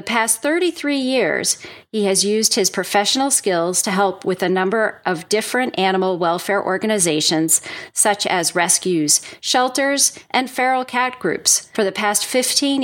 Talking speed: 150 wpm